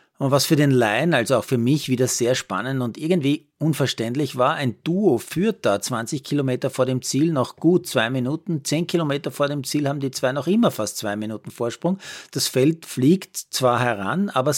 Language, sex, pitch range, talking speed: German, male, 115-155 Hz, 200 wpm